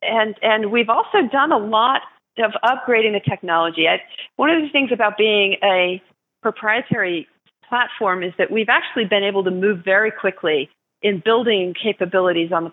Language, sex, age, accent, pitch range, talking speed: English, female, 40-59, American, 175-225 Hz, 170 wpm